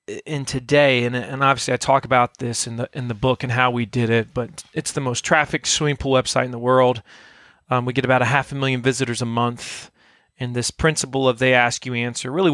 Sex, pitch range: male, 125-160 Hz